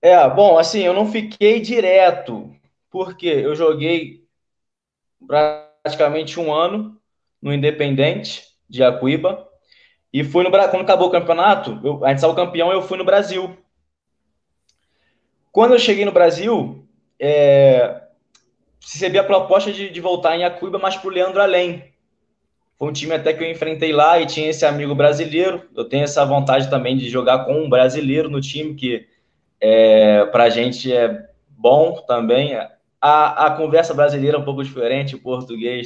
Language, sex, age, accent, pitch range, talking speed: Portuguese, male, 20-39, Brazilian, 135-180 Hz, 155 wpm